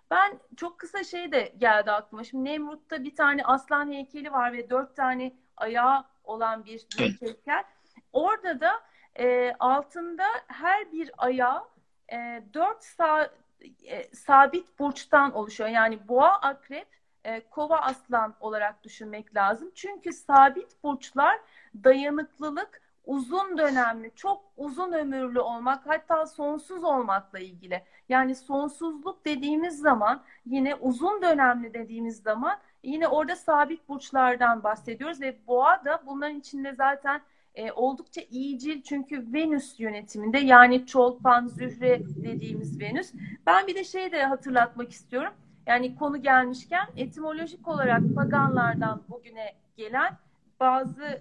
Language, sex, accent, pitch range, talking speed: Turkish, female, native, 240-310 Hz, 125 wpm